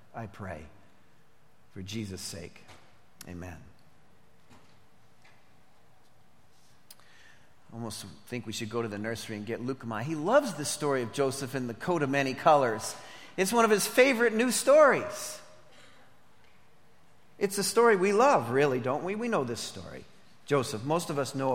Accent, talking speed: American, 150 wpm